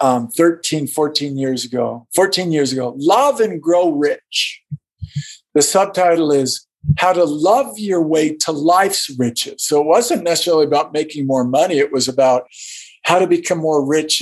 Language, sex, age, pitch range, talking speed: Dutch, male, 50-69, 135-175 Hz, 165 wpm